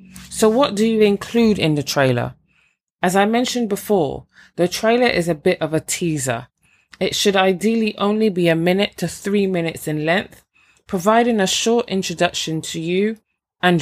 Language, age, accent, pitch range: English, 20-39, British, 155-205 Hz